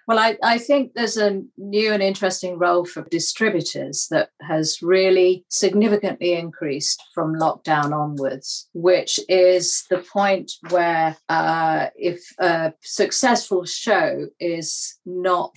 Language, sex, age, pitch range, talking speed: English, female, 50-69, 150-180 Hz, 125 wpm